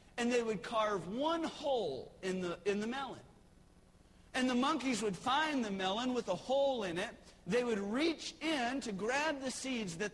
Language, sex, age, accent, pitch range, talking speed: English, male, 40-59, American, 190-265 Hz, 190 wpm